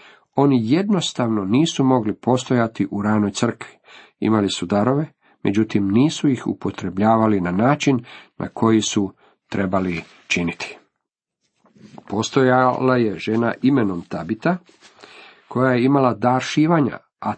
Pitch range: 105-130 Hz